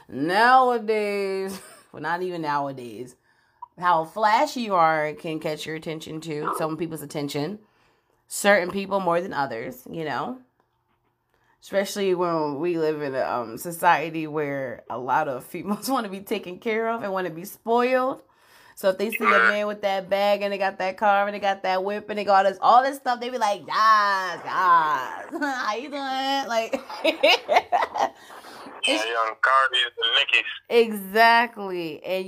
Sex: female